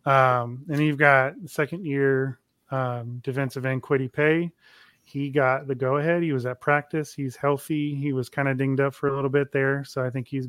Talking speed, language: 205 wpm, English